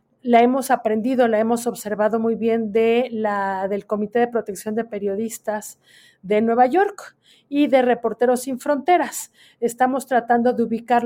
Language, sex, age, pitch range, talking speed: Spanish, female, 40-59, 225-285 Hz, 140 wpm